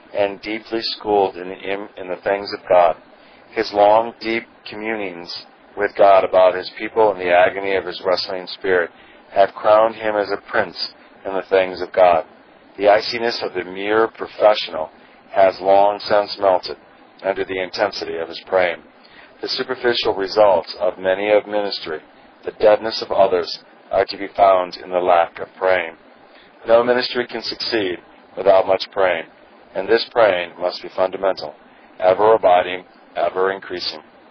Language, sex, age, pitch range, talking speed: English, male, 40-59, 95-110 Hz, 155 wpm